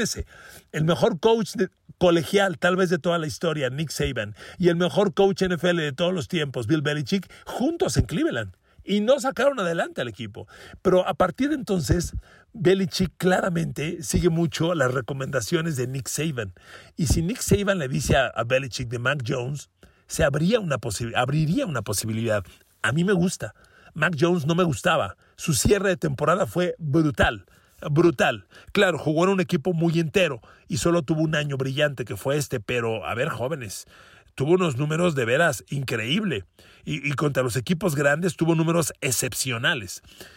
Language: Spanish